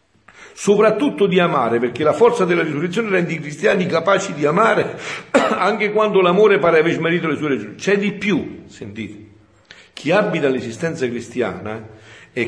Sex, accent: male, native